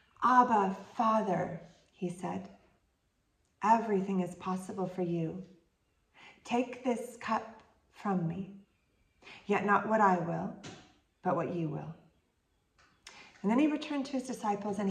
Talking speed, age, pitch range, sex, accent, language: 125 wpm, 40-59, 190-245 Hz, female, American, English